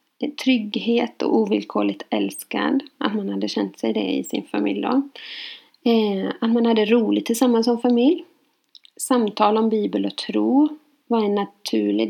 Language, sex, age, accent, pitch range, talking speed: Swedish, female, 30-49, native, 200-280 Hz, 145 wpm